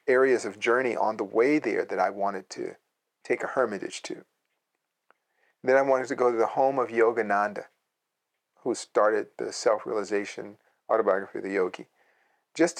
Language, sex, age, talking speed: English, male, 50-69, 160 wpm